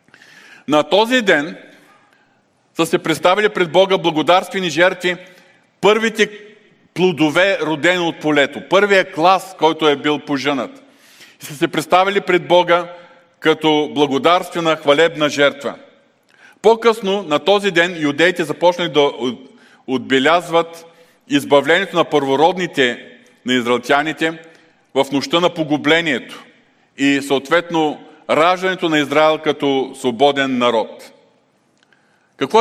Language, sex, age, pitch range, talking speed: Bulgarian, male, 40-59, 145-185 Hz, 105 wpm